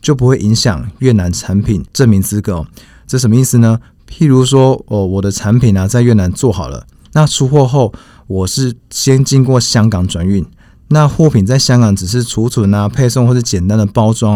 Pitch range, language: 100-130 Hz, Chinese